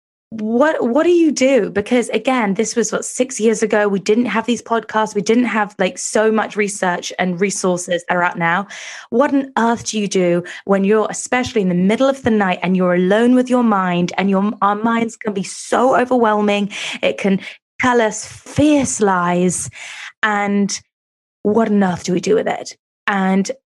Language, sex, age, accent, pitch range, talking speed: English, female, 20-39, British, 180-220 Hz, 190 wpm